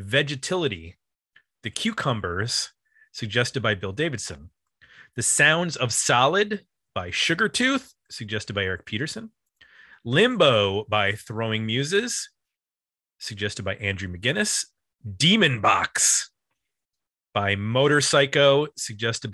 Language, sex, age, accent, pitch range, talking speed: English, male, 30-49, American, 105-145 Hz, 100 wpm